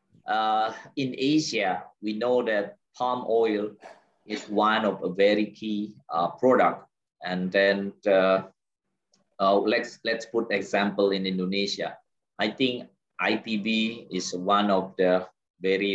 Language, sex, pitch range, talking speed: Indonesian, male, 100-125 Hz, 130 wpm